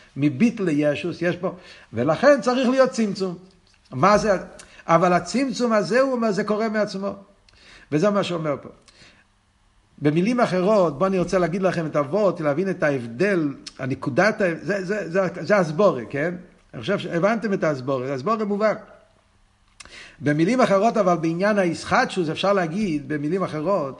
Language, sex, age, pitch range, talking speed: Hebrew, male, 50-69, 155-205 Hz, 150 wpm